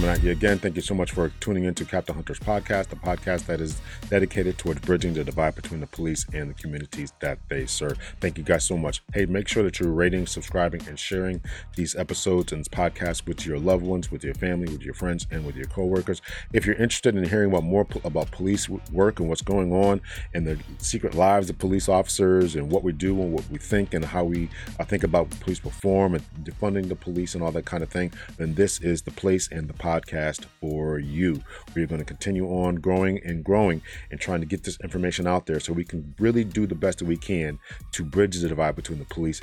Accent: American